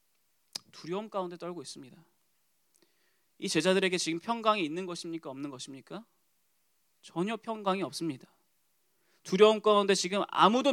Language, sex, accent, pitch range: Korean, male, native, 155-205 Hz